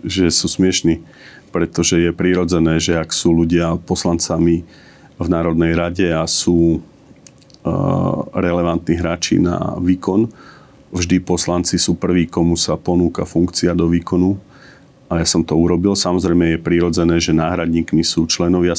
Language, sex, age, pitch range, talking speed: Slovak, male, 40-59, 85-95 Hz, 135 wpm